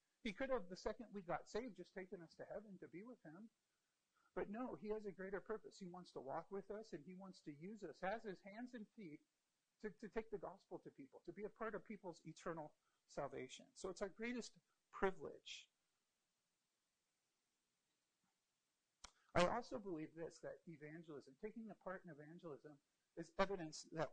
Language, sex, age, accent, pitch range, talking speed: English, male, 50-69, American, 155-210 Hz, 185 wpm